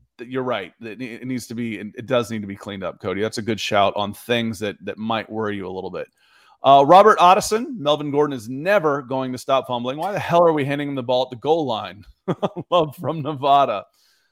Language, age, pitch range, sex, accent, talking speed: English, 30-49, 115-150 Hz, male, American, 230 wpm